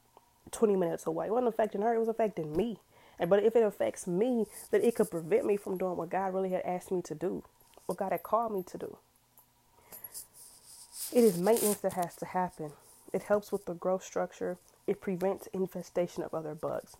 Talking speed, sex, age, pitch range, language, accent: 205 wpm, female, 20-39, 180-235 Hz, English, American